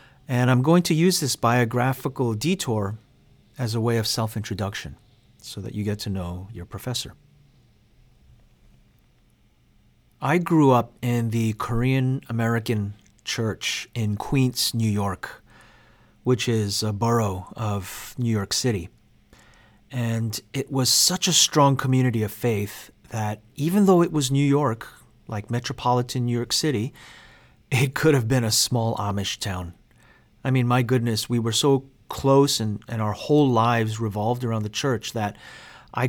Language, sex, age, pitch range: English, male, 30-49, 110-135 Hz